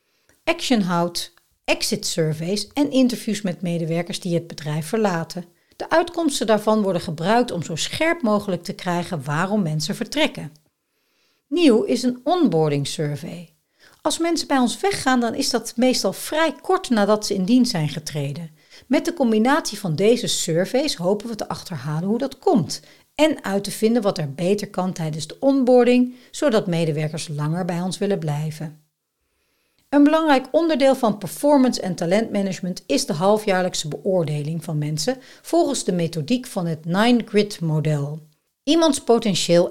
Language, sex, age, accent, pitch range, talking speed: Dutch, female, 60-79, Dutch, 165-250 Hz, 150 wpm